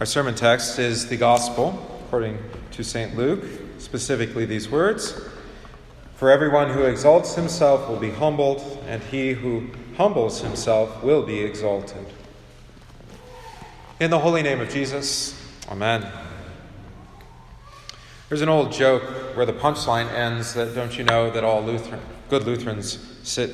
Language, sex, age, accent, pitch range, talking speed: English, male, 40-59, American, 110-135 Hz, 140 wpm